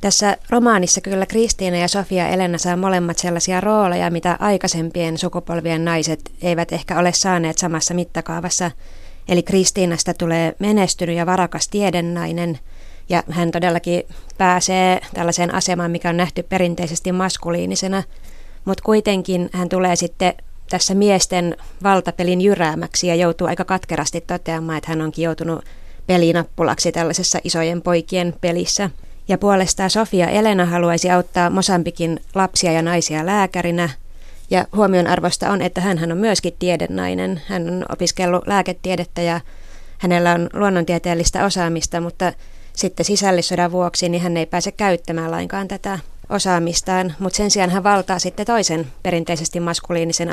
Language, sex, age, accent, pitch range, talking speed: Finnish, female, 20-39, native, 170-185 Hz, 130 wpm